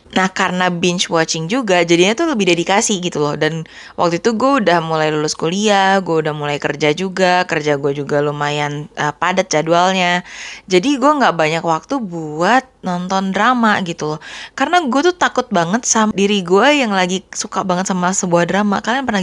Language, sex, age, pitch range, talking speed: Indonesian, female, 20-39, 170-220 Hz, 180 wpm